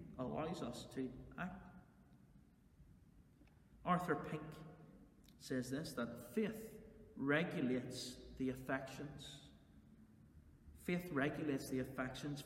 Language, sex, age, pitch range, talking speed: English, male, 40-59, 145-185 Hz, 80 wpm